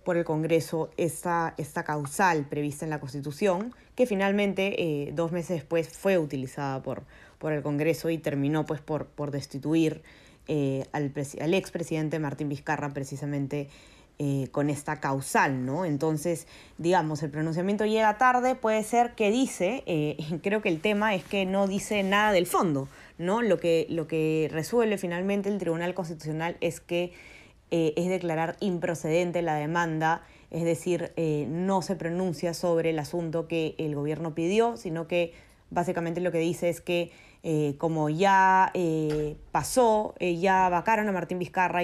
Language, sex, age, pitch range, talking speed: Spanish, female, 20-39, 155-185 Hz, 160 wpm